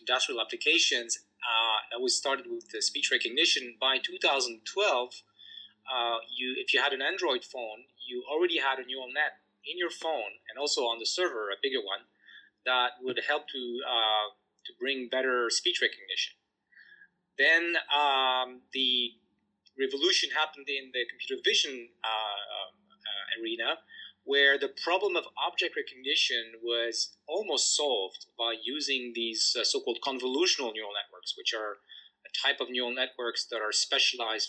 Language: English